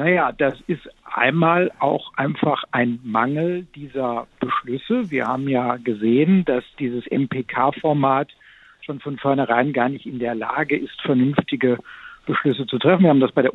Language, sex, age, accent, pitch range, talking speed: German, male, 60-79, German, 140-175 Hz, 155 wpm